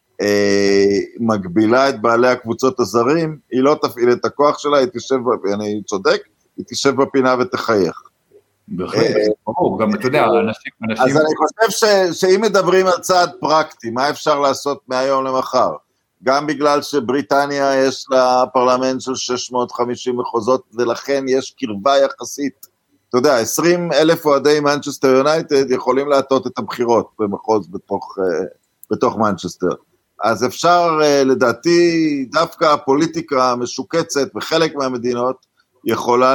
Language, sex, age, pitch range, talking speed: Hebrew, male, 50-69, 120-150 Hz, 115 wpm